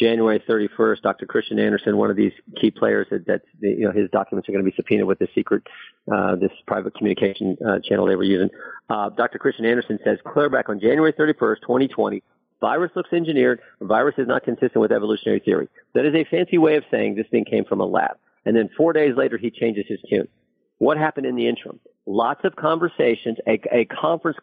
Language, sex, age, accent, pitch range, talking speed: English, male, 50-69, American, 115-150 Hz, 215 wpm